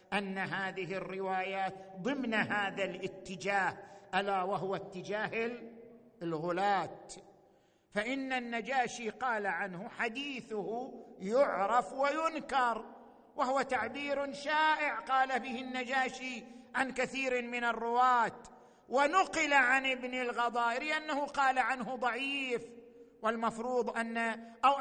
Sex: male